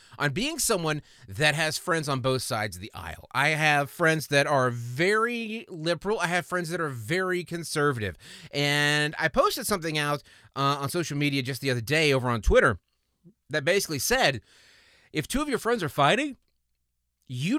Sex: male